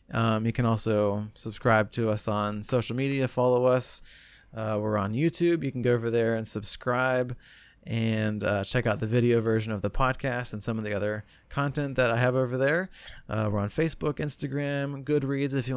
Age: 20-39